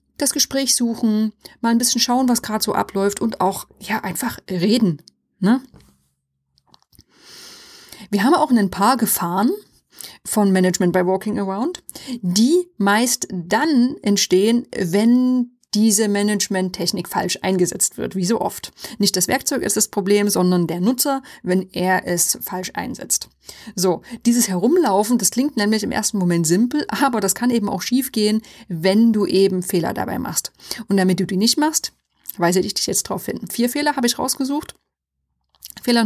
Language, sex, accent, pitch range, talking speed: German, female, German, 195-245 Hz, 160 wpm